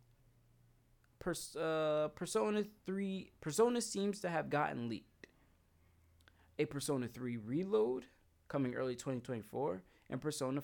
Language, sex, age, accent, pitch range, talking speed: English, male, 20-39, American, 110-145 Hz, 95 wpm